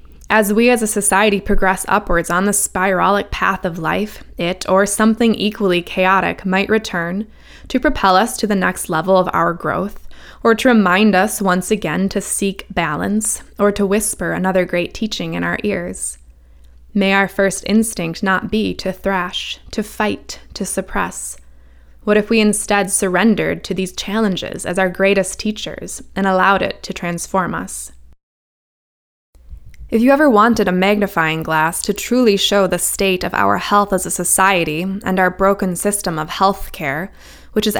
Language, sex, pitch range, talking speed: English, female, 175-205 Hz, 165 wpm